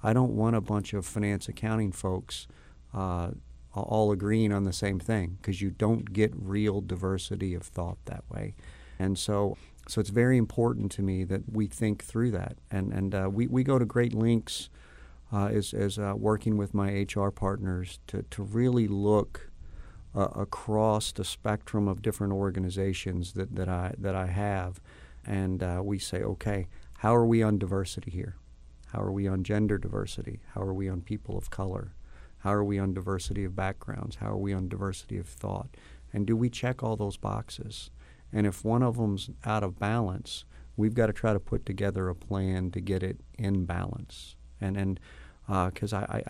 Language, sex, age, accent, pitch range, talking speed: English, male, 50-69, American, 95-110 Hz, 190 wpm